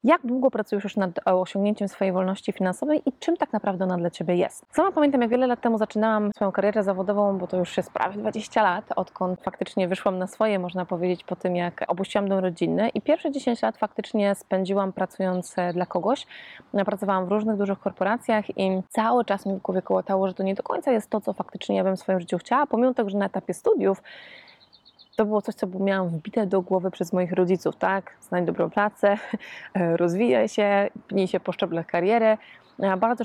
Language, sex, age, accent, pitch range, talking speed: Polish, female, 20-39, native, 185-220 Hz, 200 wpm